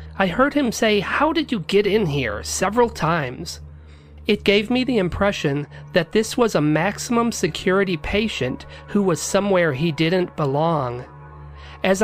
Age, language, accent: 40-59, English, American